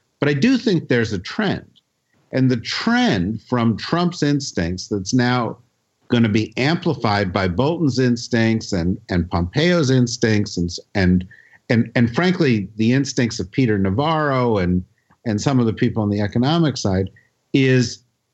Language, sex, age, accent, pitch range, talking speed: English, male, 50-69, American, 105-140 Hz, 155 wpm